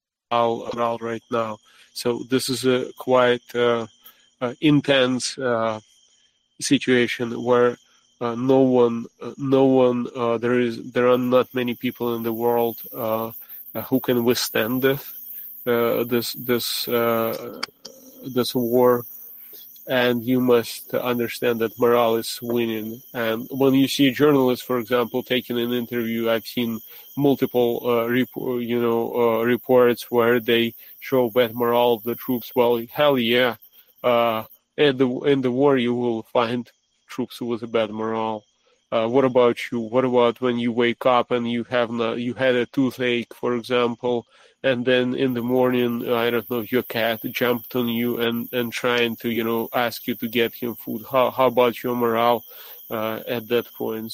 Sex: male